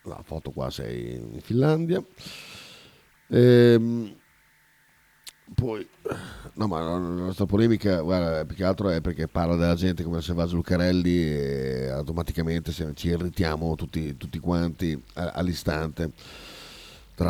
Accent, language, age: native, Italian, 40-59